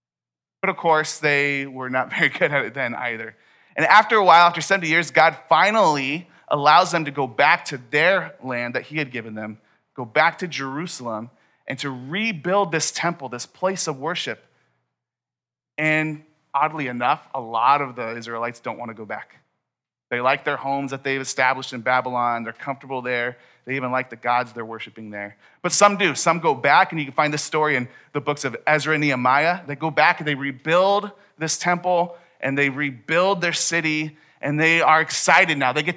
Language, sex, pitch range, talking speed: English, male, 130-165 Hz, 200 wpm